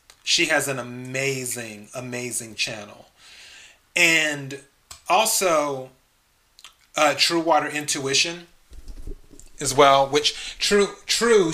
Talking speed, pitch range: 90 wpm, 125-155 Hz